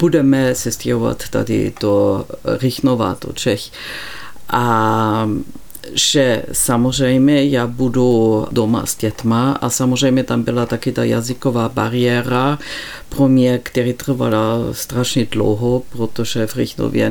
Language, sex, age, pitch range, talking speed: Czech, female, 50-69, 125-170 Hz, 110 wpm